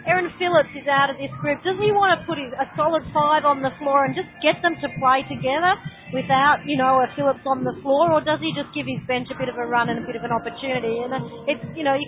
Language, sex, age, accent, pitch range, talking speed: English, female, 30-49, Australian, 245-290 Hz, 285 wpm